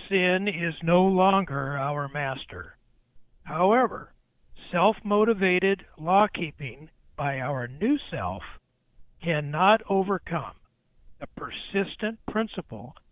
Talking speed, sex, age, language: 80 wpm, male, 60-79, English